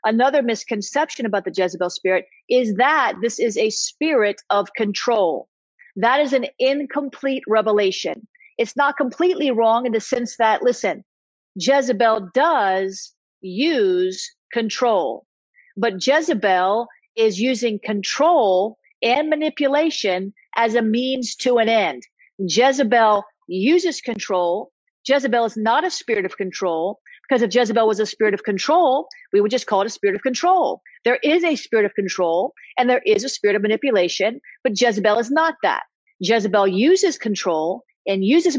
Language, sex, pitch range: English, female, 205-285 Hz